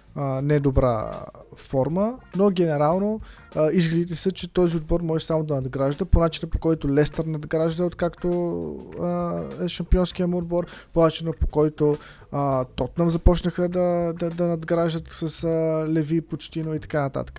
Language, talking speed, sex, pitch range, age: Bulgarian, 150 wpm, male, 140-170 Hz, 20-39